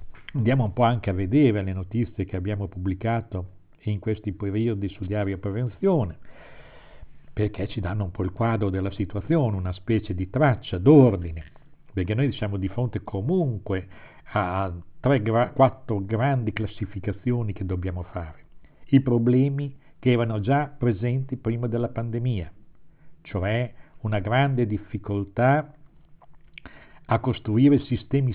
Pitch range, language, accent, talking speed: 100-140 Hz, Italian, native, 130 wpm